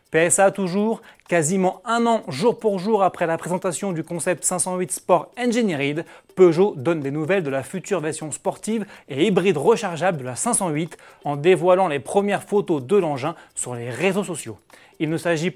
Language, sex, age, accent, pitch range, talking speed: French, male, 30-49, French, 155-200 Hz, 175 wpm